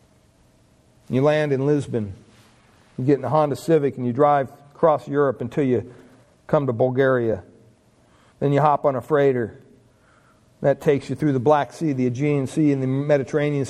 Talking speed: 170 wpm